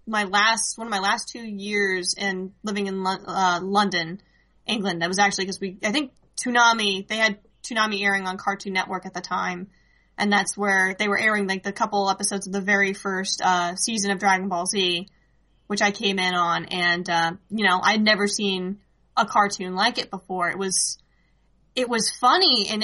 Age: 10-29